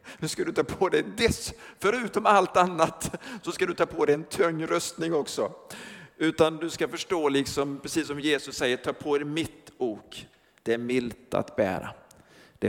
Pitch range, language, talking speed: 135-175 Hz, Swedish, 190 wpm